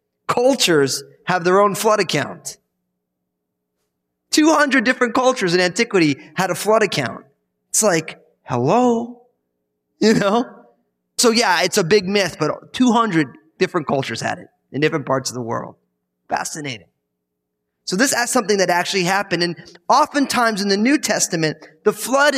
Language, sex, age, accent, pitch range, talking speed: English, male, 20-39, American, 135-210 Hz, 145 wpm